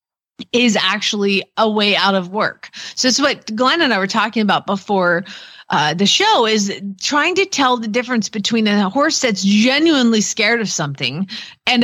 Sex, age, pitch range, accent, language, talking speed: female, 30-49, 195-275 Hz, American, English, 175 wpm